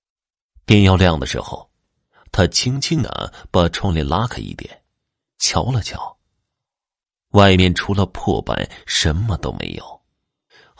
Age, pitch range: 30-49, 85-125 Hz